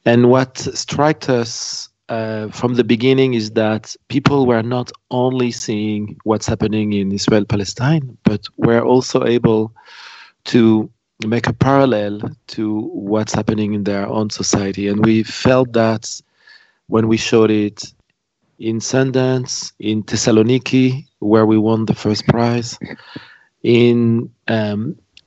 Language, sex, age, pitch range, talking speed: English, male, 40-59, 110-130 Hz, 130 wpm